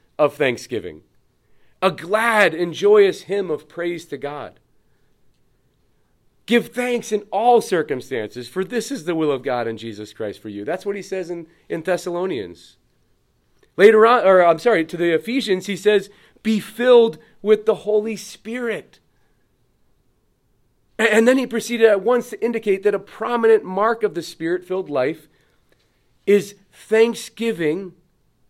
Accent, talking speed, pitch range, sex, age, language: American, 145 wpm, 150-215 Hz, male, 40-59, English